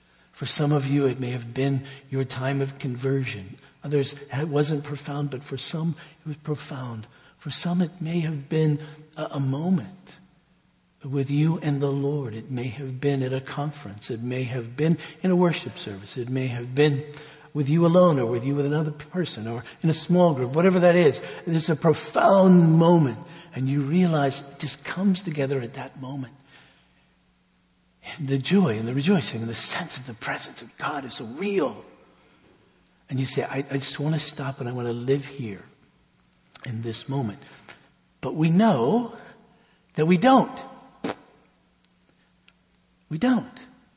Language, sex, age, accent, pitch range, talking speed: English, male, 60-79, American, 135-170 Hz, 175 wpm